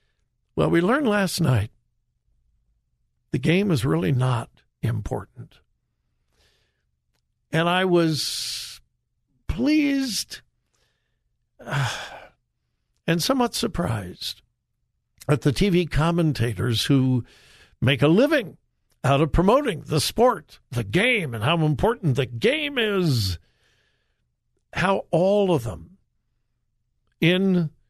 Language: English